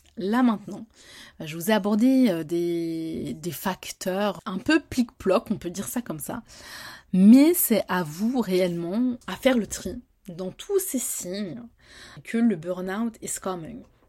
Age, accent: 20-39, French